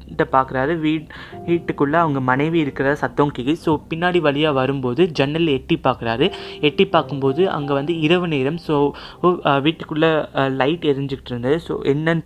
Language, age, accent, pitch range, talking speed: Tamil, 20-39, native, 130-155 Hz, 130 wpm